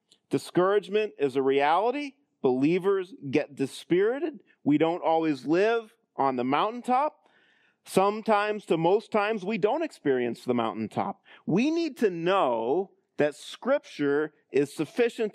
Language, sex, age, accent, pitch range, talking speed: English, male, 40-59, American, 150-220 Hz, 120 wpm